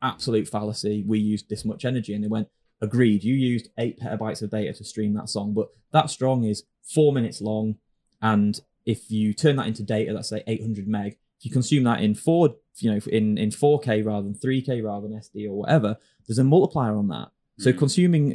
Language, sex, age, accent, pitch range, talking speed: English, male, 20-39, British, 110-150 Hz, 215 wpm